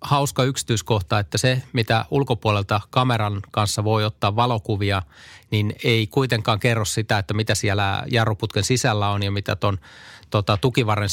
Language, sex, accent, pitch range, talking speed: Finnish, male, native, 100-120 Hz, 145 wpm